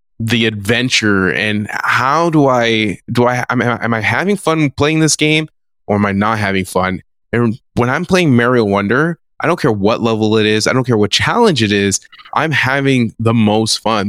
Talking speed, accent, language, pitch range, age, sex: 200 wpm, American, English, 105-130 Hz, 20-39, male